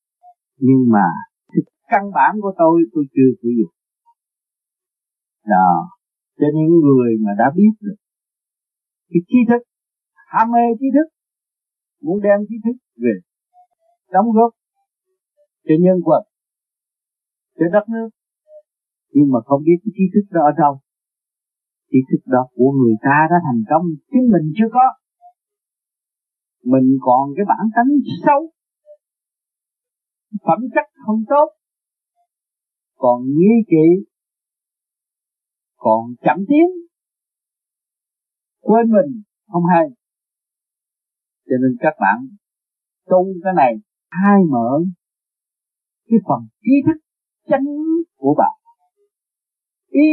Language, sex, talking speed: Vietnamese, male, 120 wpm